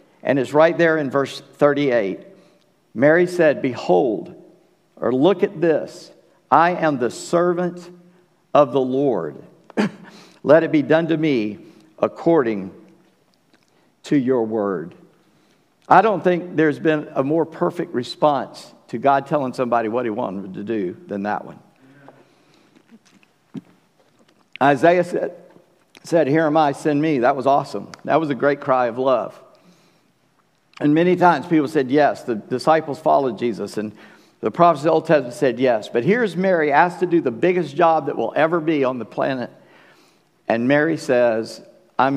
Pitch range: 125-170 Hz